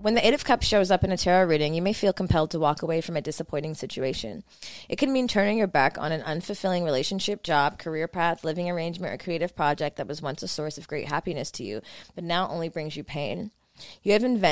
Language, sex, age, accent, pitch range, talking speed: English, female, 20-39, American, 150-190 Hz, 240 wpm